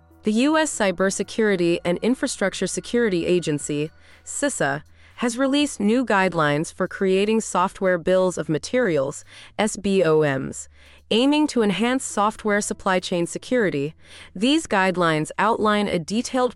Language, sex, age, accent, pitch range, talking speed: English, female, 30-49, American, 165-225 Hz, 110 wpm